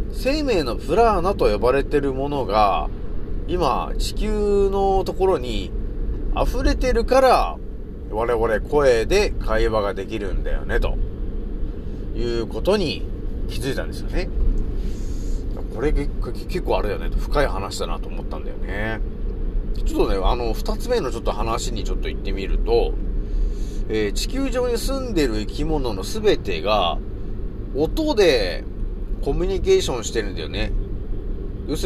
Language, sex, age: Japanese, male, 30-49